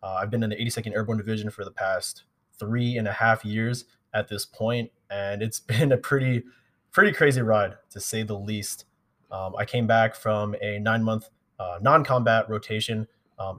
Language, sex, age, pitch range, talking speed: English, male, 20-39, 105-125 Hz, 185 wpm